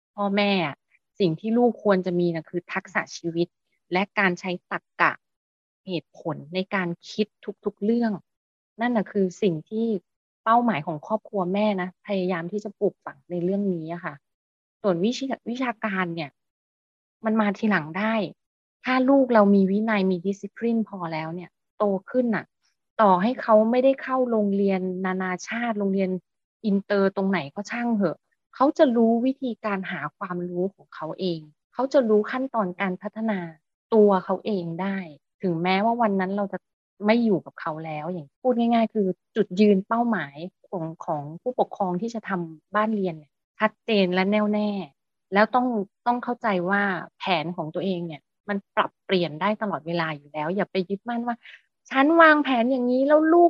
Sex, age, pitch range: female, 20-39, 180-225 Hz